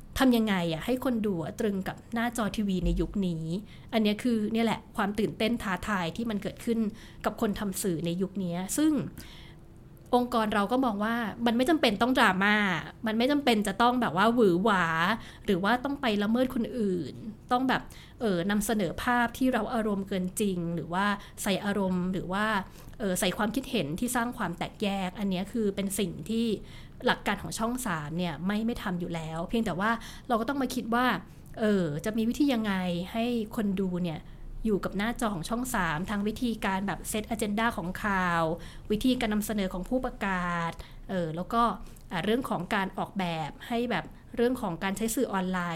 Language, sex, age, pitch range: Thai, female, 20-39, 180-235 Hz